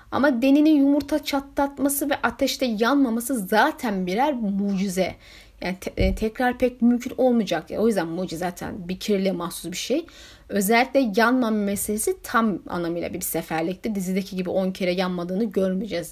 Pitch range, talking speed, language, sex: 205-275 Hz, 140 wpm, Turkish, female